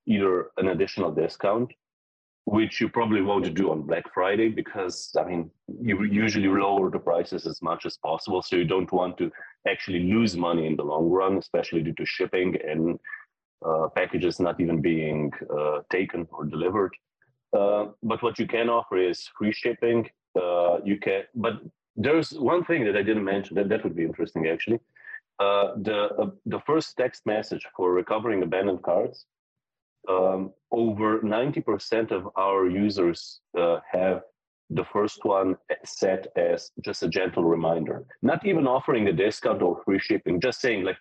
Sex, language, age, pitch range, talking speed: male, Croatian, 30-49, 85-110 Hz, 170 wpm